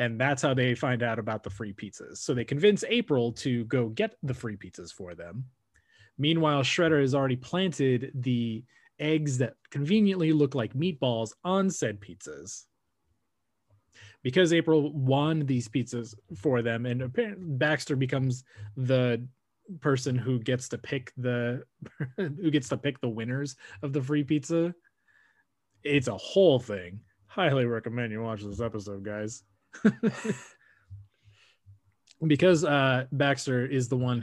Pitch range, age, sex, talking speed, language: 115-145 Hz, 30-49, male, 145 wpm, English